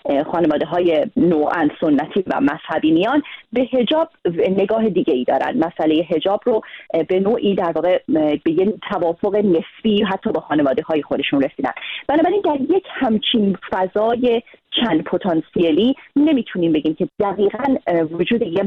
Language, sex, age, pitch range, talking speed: Persian, female, 30-49, 160-225 Hz, 135 wpm